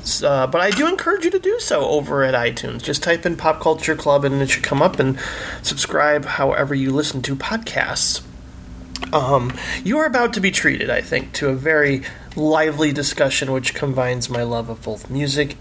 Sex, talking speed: male, 195 wpm